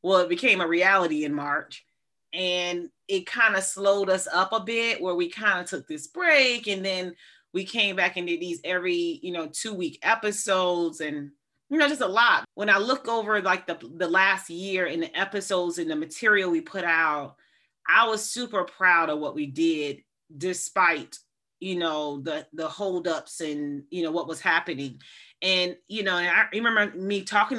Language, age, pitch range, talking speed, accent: English, 30-49, 165-210 Hz, 190 wpm, American